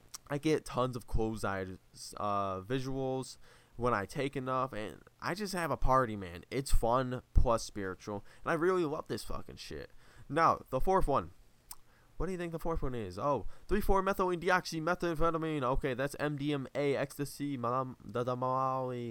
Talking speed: 175 wpm